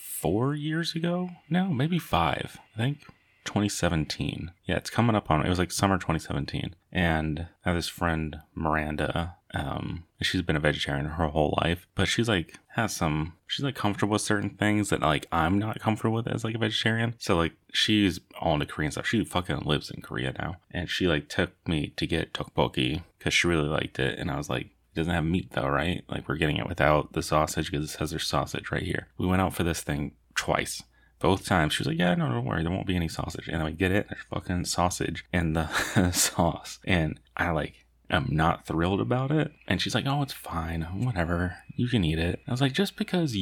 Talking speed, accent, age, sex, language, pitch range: 220 wpm, American, 30-49, male, English, 80-115 Hz